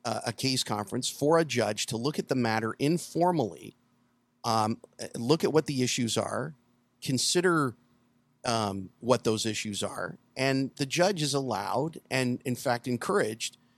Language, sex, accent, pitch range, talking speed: English, male, American, 120-150 Hz, 150 wpm